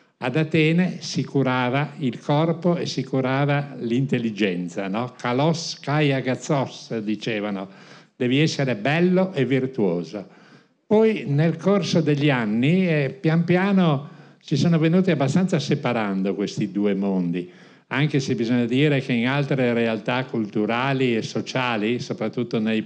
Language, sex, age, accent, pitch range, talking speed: Italian, male, 50-69, native, 110-150 Hz, 125 wpm